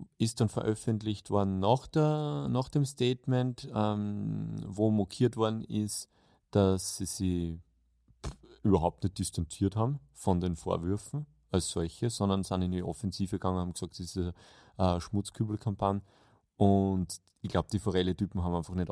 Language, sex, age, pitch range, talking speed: German, male, 30-49, 95-125 Hz, 150 wpm